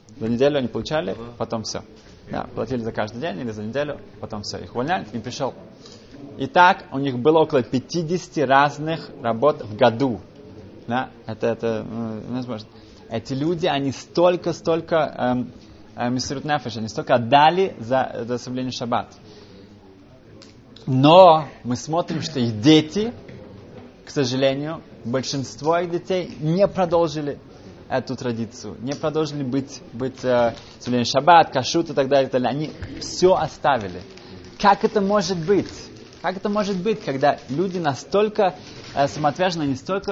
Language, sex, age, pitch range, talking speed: Russian, male, 20-39, 115-160 Hz, 140 wpm